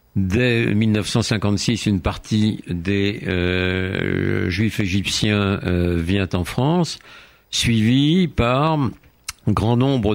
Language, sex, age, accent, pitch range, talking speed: French, male, 60-79, French, 95-120 Hz, 100 wpm